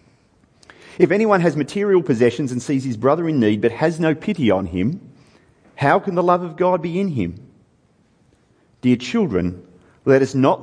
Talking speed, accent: 175 wpm, Australian